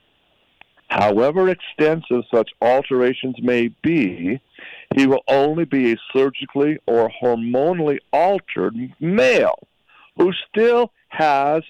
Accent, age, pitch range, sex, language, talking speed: American, 60-79, 130-175 Hz, male, English, 95 wpm